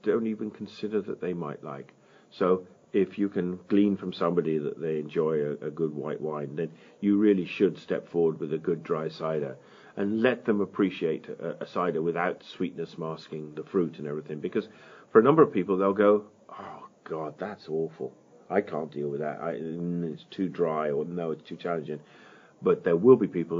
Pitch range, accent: 80-100 Hz, British